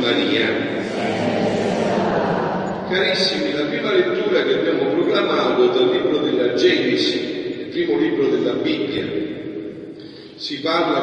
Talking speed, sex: 105 wpm, male